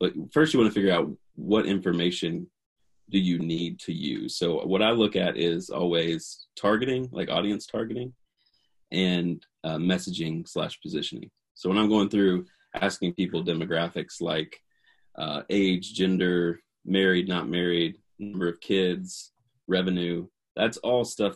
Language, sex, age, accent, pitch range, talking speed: English, male, 30-49, American, 85-100 Hz, 145 wpm